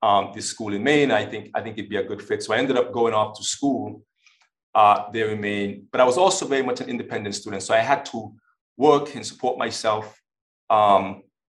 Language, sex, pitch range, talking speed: English, male, 110-135 Hz, 230 wpm